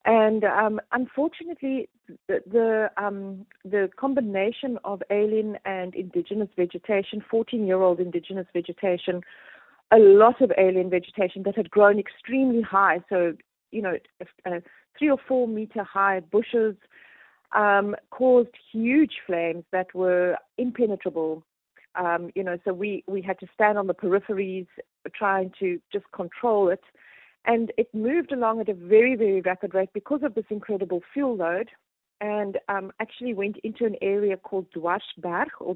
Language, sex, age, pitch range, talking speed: English, female, 40-59, 185-225 Hz, 145 wpm